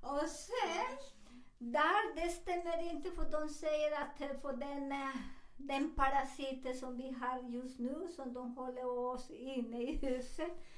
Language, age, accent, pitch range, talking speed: Swedish, 50-69, American, 235-310 Hz, 145 wpm